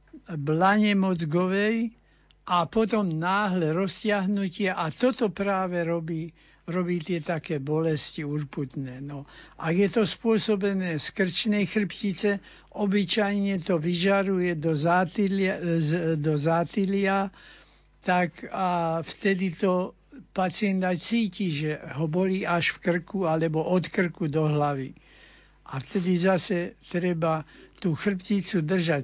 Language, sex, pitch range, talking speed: Slovak, male, 160-195 Hz, 110 wpm